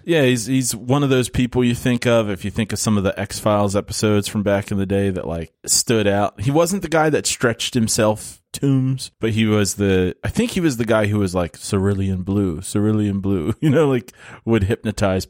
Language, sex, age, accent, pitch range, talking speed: English, male, 30-49, American, 95-125 Hz, 230 wpm